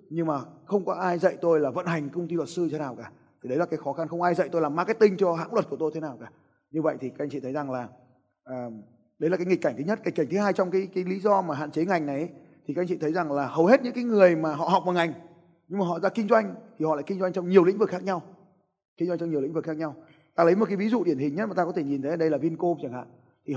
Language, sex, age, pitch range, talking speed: Vietnamese, male, 20-39, 145-190 Hz, 335 wpm